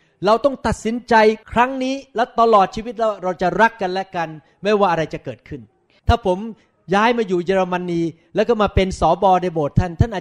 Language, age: Thai, 30-49